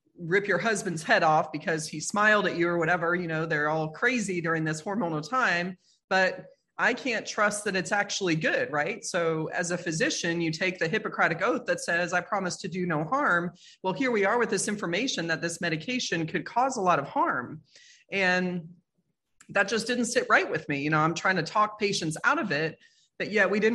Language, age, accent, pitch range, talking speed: English, 30-49, American, 165-210 Hz, 215 wpm